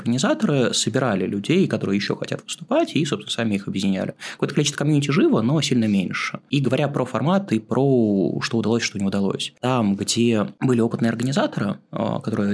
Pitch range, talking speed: 110-145 Hz, 170 wpm